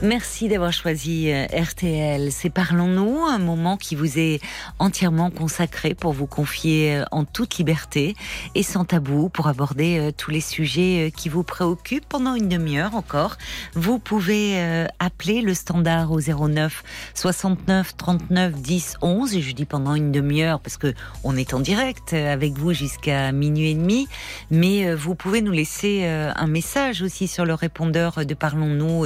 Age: 40-59